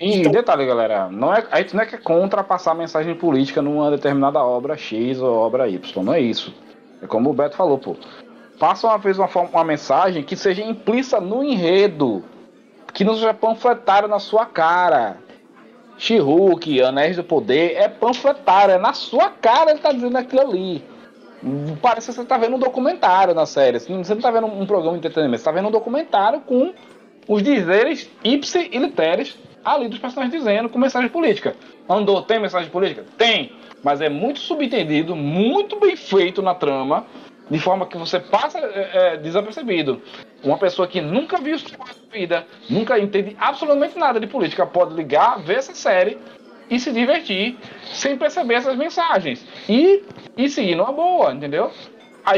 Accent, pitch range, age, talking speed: Brazilian, 165-255 Hz, 20-39, 175 wpm